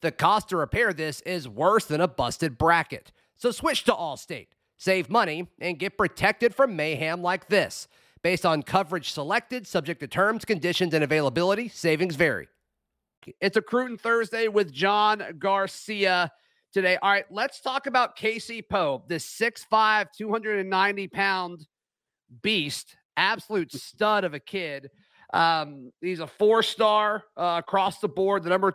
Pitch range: 170-210 Hz